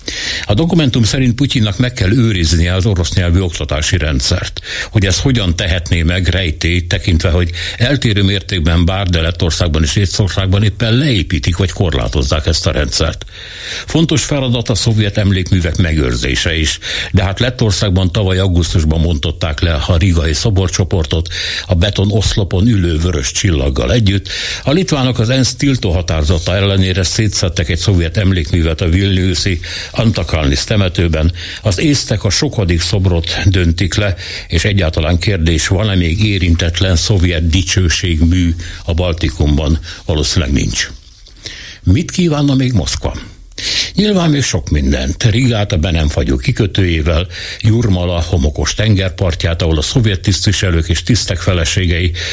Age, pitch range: 60-79, 85-105 Hz